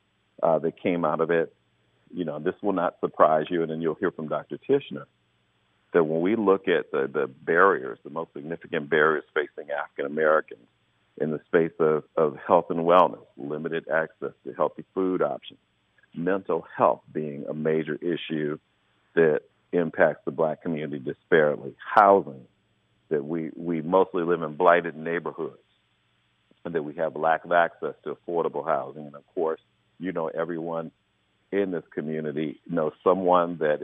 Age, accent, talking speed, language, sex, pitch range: 50-69, American, 165 wpm, English, male, 75-90 Hz